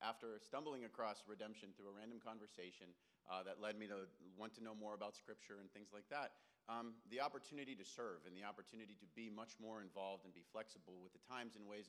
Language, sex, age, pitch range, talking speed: English, male, 40-59, 95-120 Hz, 220 wpm